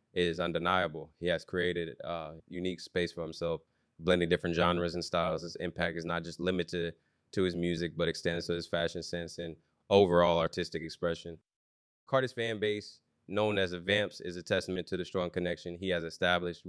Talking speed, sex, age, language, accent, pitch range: 185 wpm, male, 20-39, English, American, 85-90 Hz